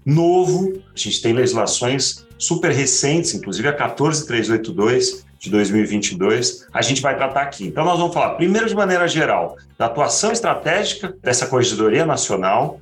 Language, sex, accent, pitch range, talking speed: Portuguese, male, Brazilian, 110-160 Hz, 145 wpm